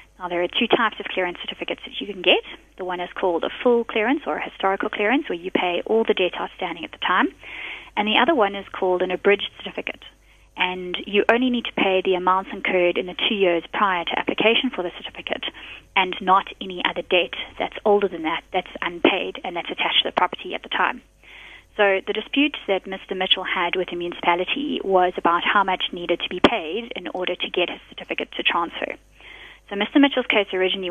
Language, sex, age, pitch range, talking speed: English, female, 20-39, 180-220 Hz, 215 wpm